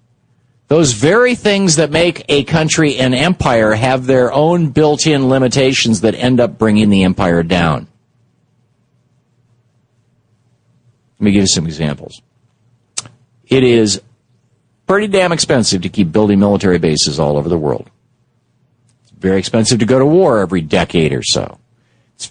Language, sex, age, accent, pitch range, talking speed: English, male, 50-69, American, 105-130 Hz, 145 wpm